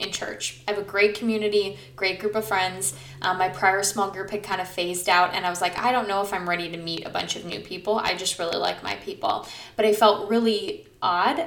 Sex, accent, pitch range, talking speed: female, American, 185-230 Hz, 255 wpm